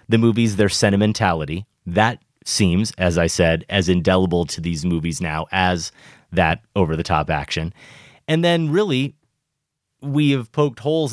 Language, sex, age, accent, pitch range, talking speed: English, male, 30-49, American, 90-130 Hz, 140 wpm